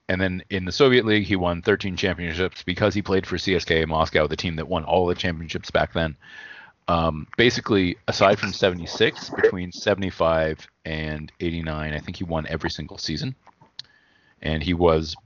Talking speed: 175 wpm